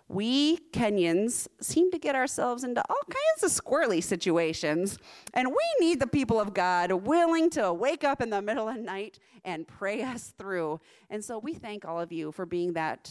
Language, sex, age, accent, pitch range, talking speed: English, female, 30-49, American, 185-260 Hz, 195 wpm